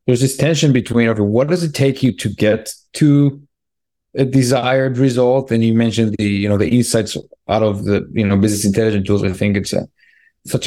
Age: 30-49